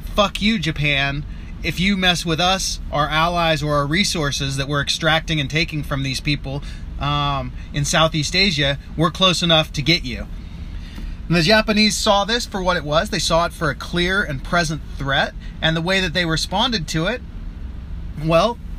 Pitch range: 140-175 Hz